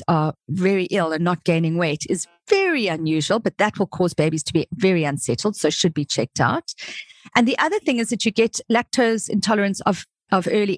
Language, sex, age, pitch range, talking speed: English, female, 40-59, 170-215 Hz, 205 wpm